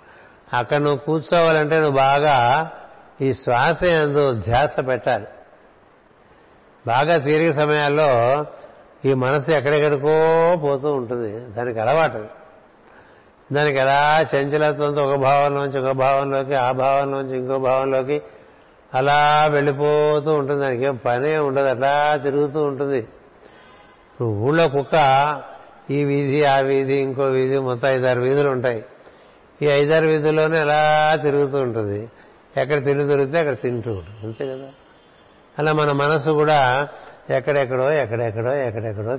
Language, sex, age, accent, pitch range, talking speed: Telugu, male, 60-79, native, 135-155 Hz, 115 wpm